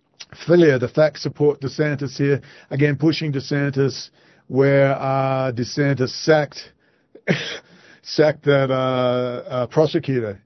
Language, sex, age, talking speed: English, male, 40-59, 110 wpm